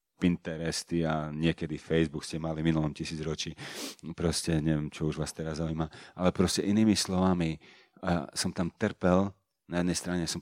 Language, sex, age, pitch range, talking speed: Slovak, male, 40-59, 80-90 Hz, 155 wpm